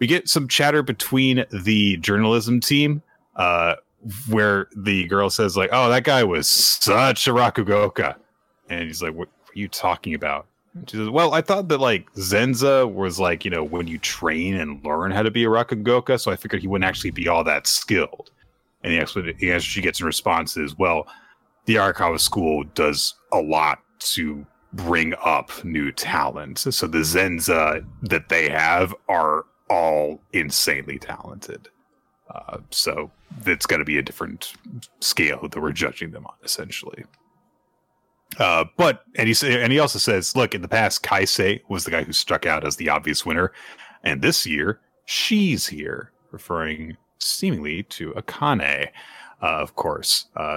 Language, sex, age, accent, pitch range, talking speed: English, male, 30-49, American, 90-125 Hz, 170 wpm